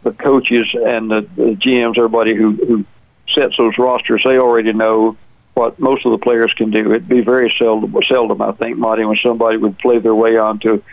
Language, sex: English, male